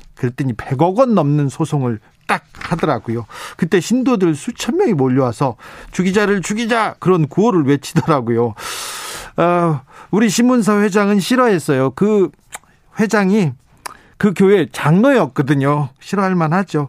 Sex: male